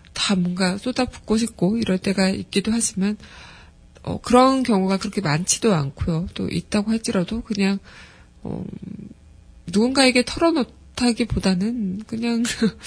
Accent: native